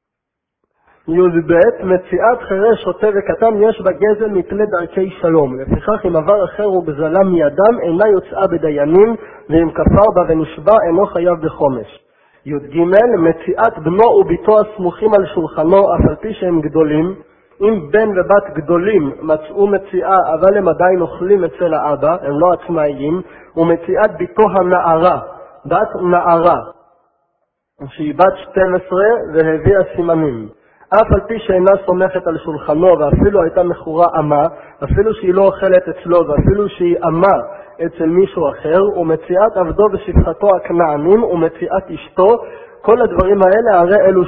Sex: male